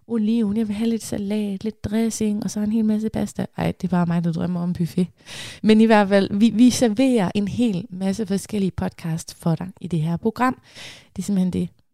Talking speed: 210 wpm